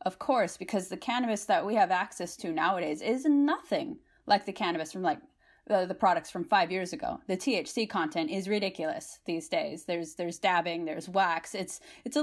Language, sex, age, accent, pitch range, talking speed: English, female, 20-39, American, 170-220 Hz, 195 wpm